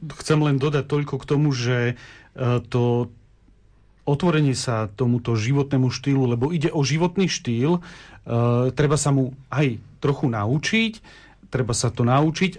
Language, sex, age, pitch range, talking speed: Slovak, male, 40-59, 120-145 Hz, 135 wpm